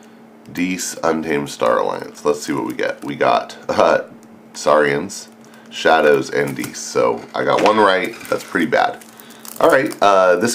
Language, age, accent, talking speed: English, 40-59, American, 150 wpm